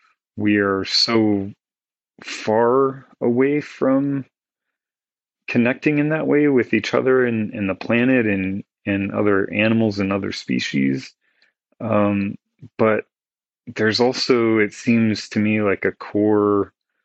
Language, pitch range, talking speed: English, 95-110 Hz, 125 wpm